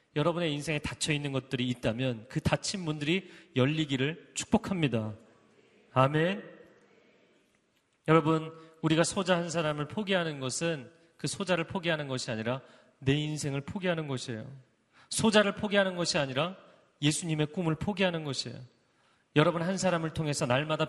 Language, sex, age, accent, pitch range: Korean, male, 30-49, native, 130-170 Hz